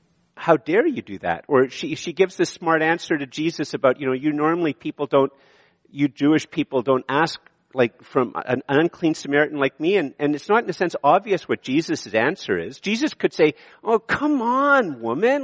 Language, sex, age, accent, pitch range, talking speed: English, male, 50-69, American, 155-240 Hz, 200 wpm